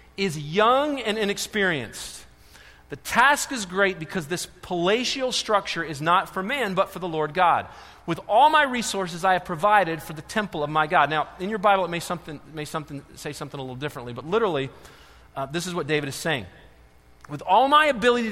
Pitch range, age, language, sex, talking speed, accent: 175-235 Hz, 40-59, English, male, 200 wpm, American